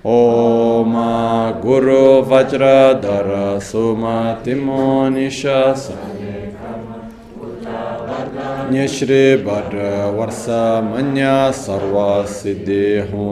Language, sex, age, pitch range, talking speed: Italian, male, 30-49, 100-130 Hz, 70 wpm